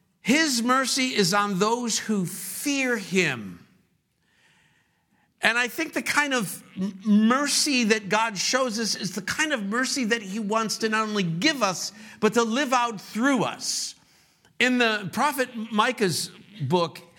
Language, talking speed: English, 150 wpm